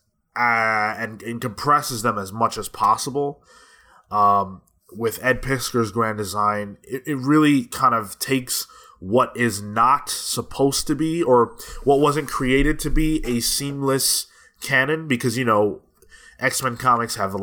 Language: English